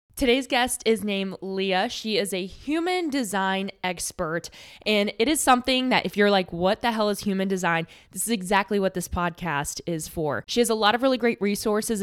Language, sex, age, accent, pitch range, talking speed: English, female, 10-29, American, 185-235 Hz, 205 wpm